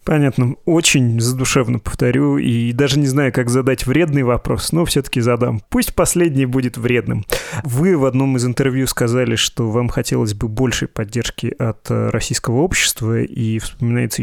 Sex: male